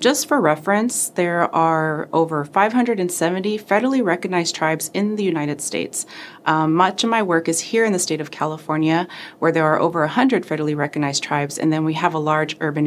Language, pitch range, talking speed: English, 150-190 Hz, 190 wpm